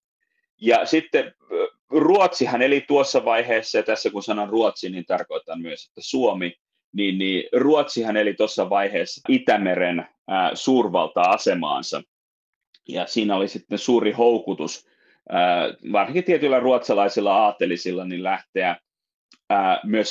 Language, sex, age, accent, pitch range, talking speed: Finnish, male, 30-49, native, 95-135 Hz, 105 wpm